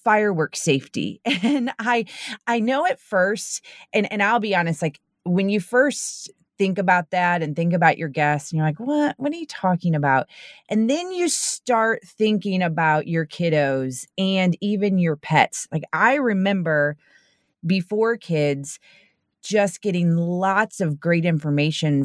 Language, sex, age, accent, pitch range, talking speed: English, female, 30-49, American, 155-200 Hz, 155 wpm